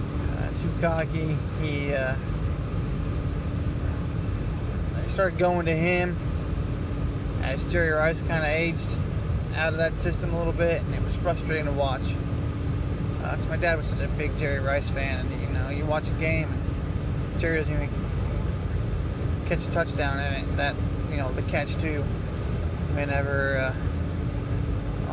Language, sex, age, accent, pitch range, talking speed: English, male, 20-39, American, 85-125 Hz, 145 wpm